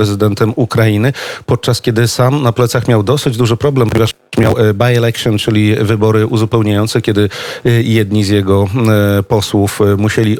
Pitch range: 110-125 Hz